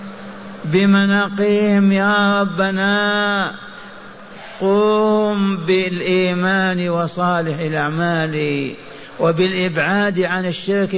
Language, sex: Arabic, male